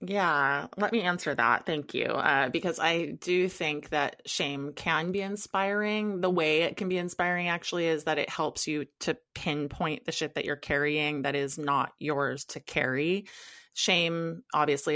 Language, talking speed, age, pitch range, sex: English, 175 wpm, 20-39, 150-175 Hz, female